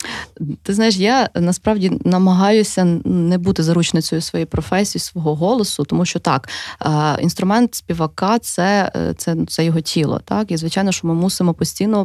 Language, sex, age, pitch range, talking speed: Ukrainian, female, 20-39, 160-190 Hz, 150 wpm